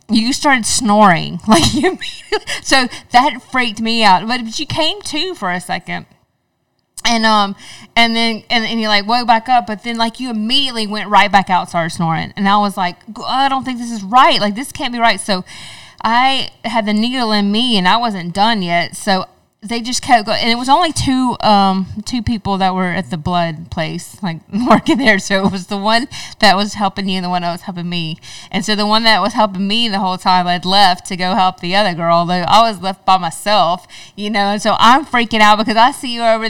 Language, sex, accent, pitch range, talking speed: English, female, American, 190-235 Hz, 230 wpm